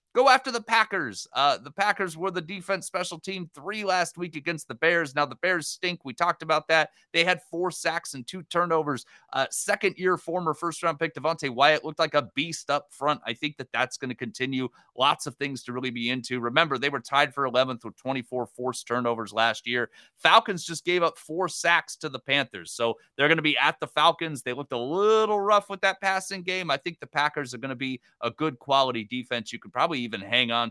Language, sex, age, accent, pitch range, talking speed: English, male, 30-49, American, 125-175 Hz, 230 wpm